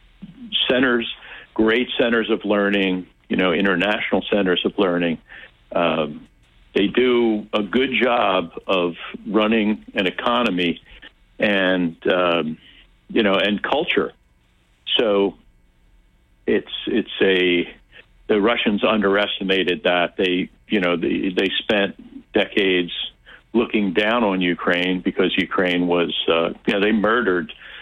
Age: 60-79